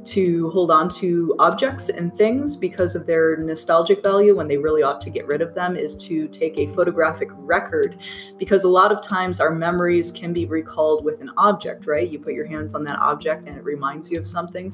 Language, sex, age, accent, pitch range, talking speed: English, female, 20-39, American, 155-205 Hz, 220 wpm